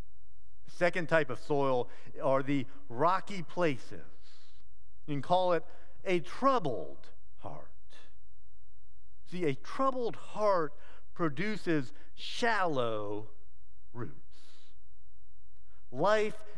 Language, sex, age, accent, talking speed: English, male, 50-69, American, 85 wpm